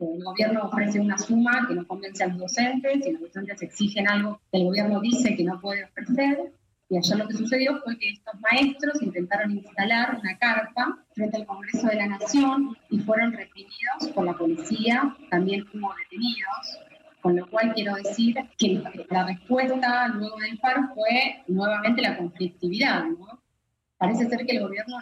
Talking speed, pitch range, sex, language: 175 wpm, 195-245 Hz, female, Spanish